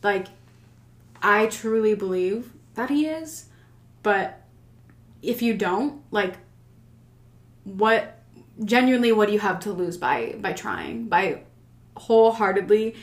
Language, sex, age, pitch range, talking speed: English, female, 20-39, 175-230 Hz, 115 wpm